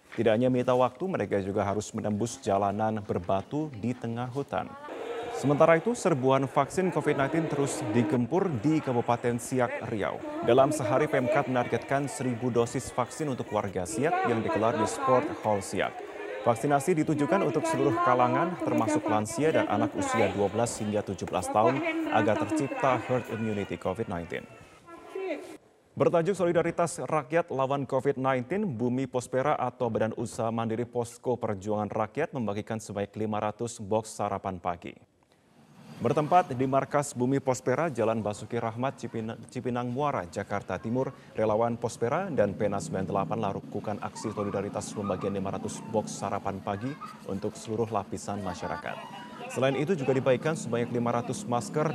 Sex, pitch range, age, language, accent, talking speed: male, 110-140 Hz, 30-49, Indonesian, native, 135 wpm